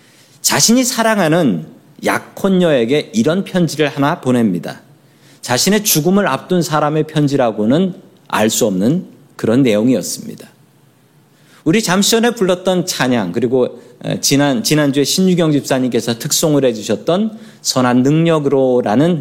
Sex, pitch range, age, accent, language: male, 135-185 Hz, 40-59, native, Korean